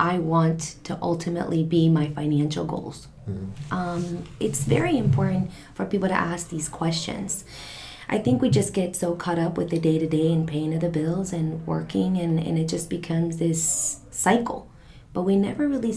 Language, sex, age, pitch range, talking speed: English, female, 20-39, 160-180 Hz, 175 wpm